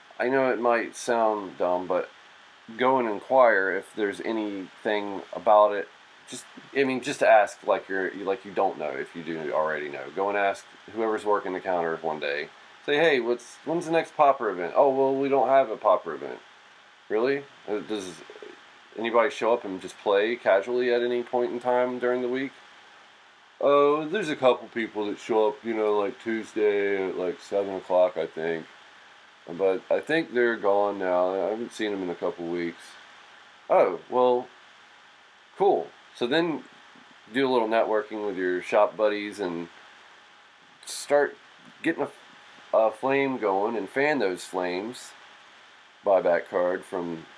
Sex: male